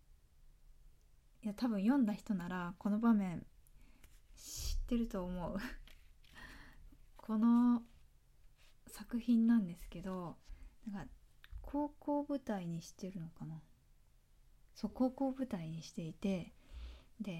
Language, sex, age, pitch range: Japanese, female, 20-39, 180-230 Hz